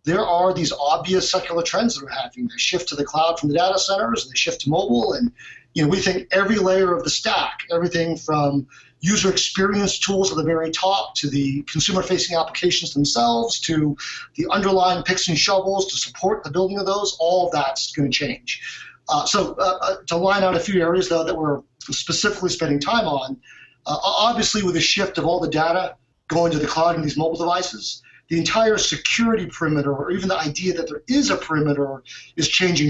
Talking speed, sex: 210 wpm, male